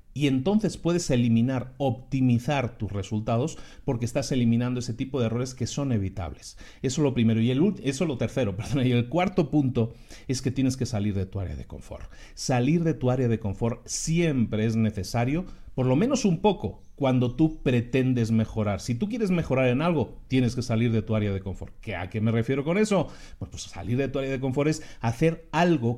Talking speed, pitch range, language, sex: 210 wpm, 110-145 Hz, Spanish, male